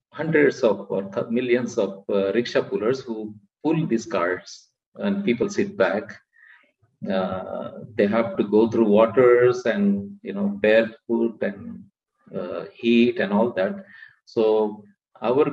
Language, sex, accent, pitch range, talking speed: English, male, Indian, 100-150 Hz, 140 wpm